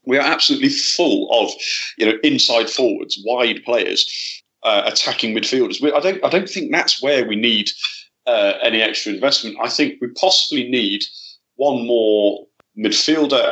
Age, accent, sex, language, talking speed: 40-59, British, male, English, 160 wpm